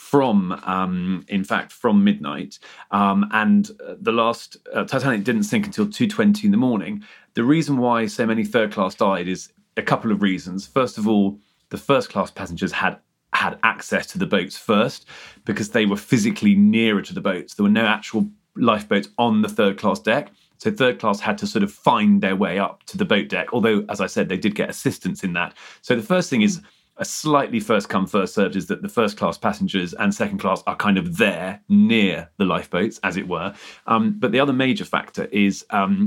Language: English